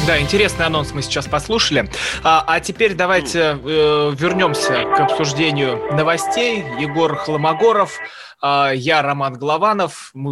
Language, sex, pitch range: Russian, male, 130-165 Hz